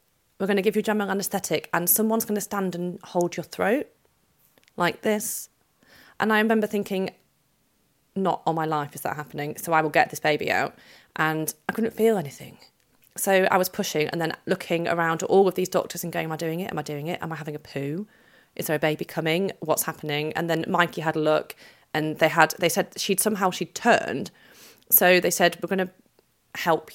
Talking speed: 220 wpm